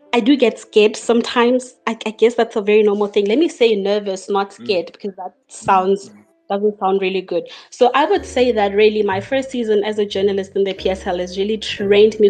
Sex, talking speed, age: female, 220 wpm, 20-39